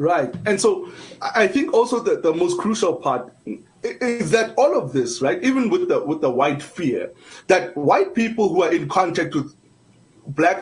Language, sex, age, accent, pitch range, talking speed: English, male, 30-49, South African, 150-240 Hz, 185 wpm